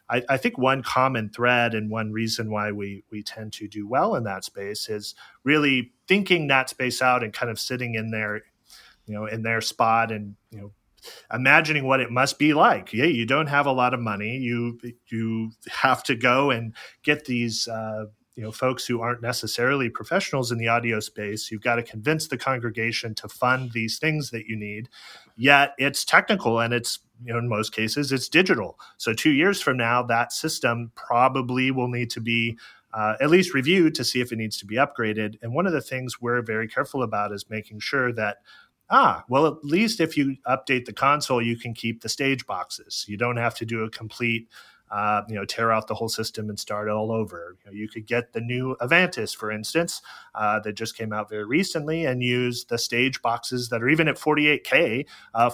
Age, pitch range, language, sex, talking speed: 30-49, 110-130 Hz, English, male, 210 wpm